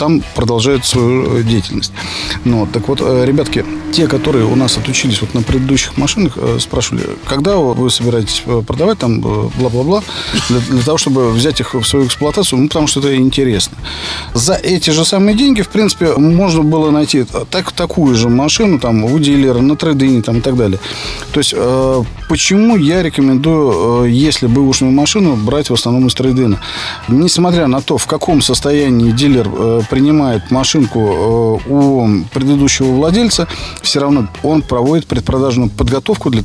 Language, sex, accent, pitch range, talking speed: Russian, male, native, 120-150 Hz, 160 wpm